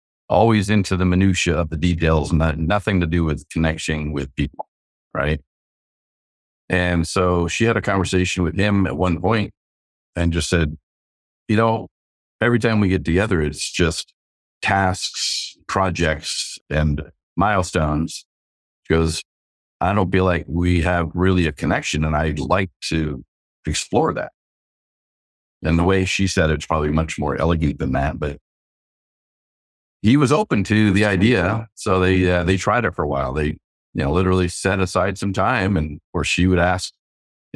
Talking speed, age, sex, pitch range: 160 wpm, 50-69, male, 75-95 Hz